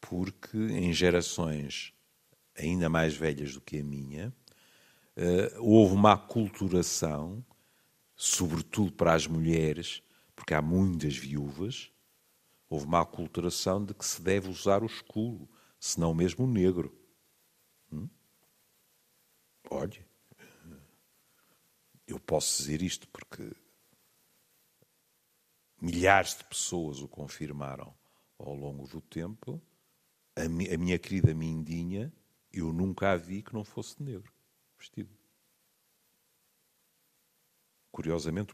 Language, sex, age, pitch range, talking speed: Portuguese, male, 50-69, 85-120 Hz, 105 wpm